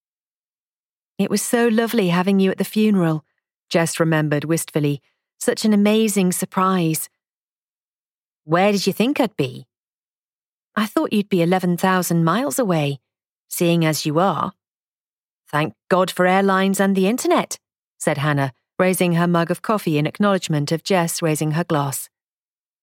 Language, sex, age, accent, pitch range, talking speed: English, female, 40-59, British, 155-220 Hz, 140 wpm